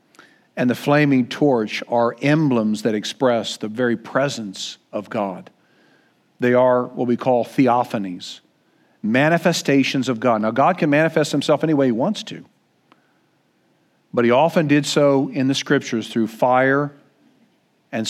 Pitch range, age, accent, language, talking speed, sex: 135-185 Hz, 50-69, American, English, 145 wpm, male